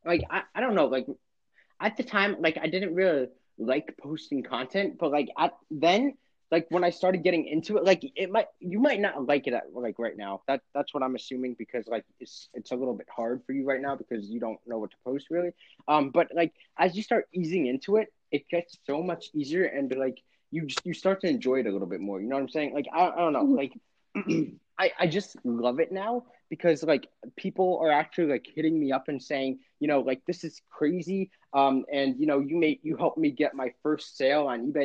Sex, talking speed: male, 240 wpm